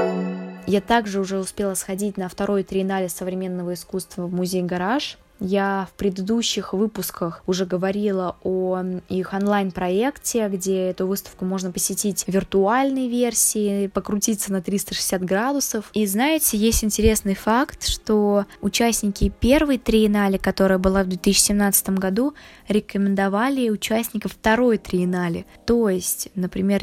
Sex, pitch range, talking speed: female, 190-225 Hz, 125 wpm